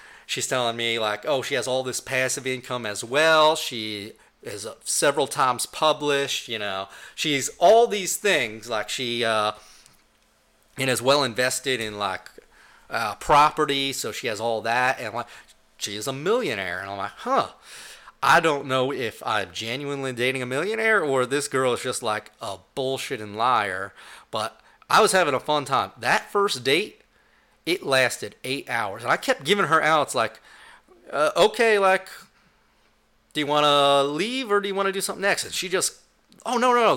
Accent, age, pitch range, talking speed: American, 30-49, 120-175 Hz, 185 wpm